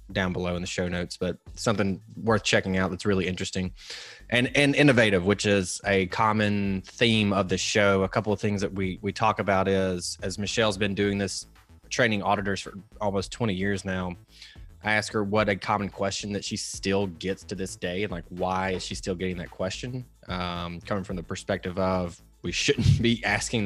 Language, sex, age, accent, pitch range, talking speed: English, male, 20-39, American, 90-105 Hz, 205 wpm